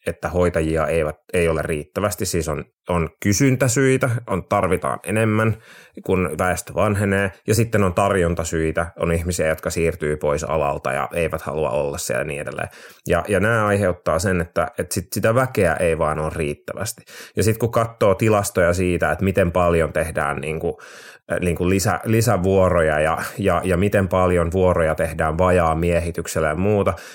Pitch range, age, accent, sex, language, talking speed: 85-105 Hz, 30-49, native, male, Finnish, 160 wpm